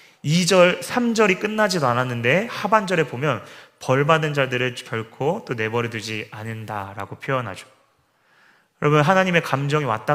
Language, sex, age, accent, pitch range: Korean, male, 30-49, native, 120-165 Hz